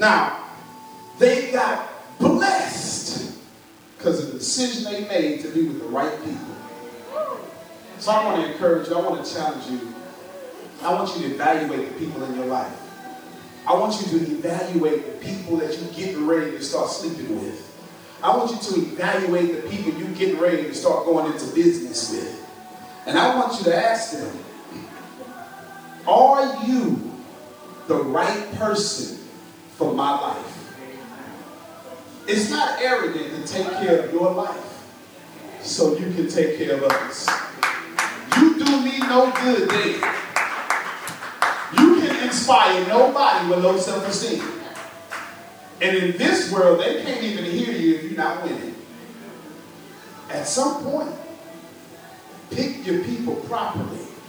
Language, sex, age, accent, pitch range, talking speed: English, male, 30-49, American, 165-265 Hz, 145 wpm